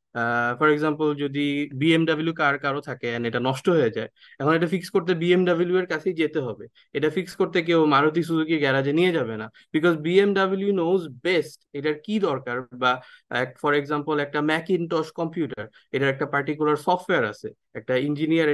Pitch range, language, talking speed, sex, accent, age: 135-170 Hz, English, 110 wpm, male, Indian, 20-39